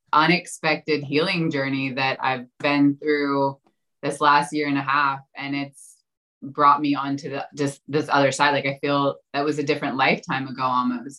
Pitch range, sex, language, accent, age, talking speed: 135-150 Hz, female, English, American, 20-39, 175 wpm